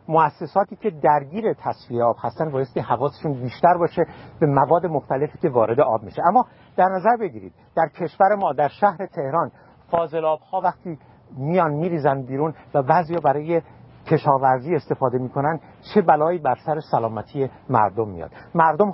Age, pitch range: 50-69, 125-175 Hz